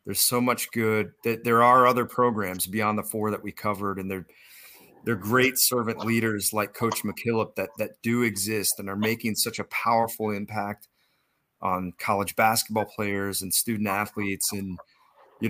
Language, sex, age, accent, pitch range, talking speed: English, male, 30-49, American, 100-115 Hz, 170 wpm